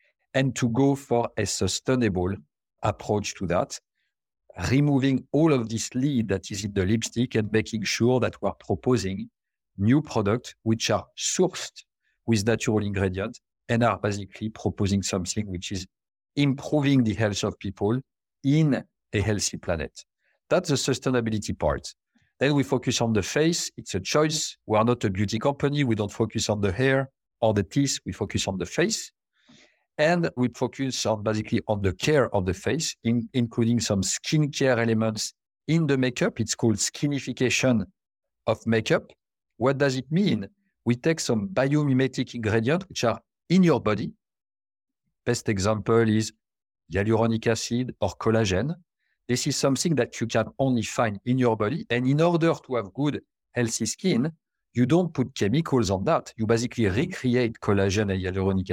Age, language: 50-69, English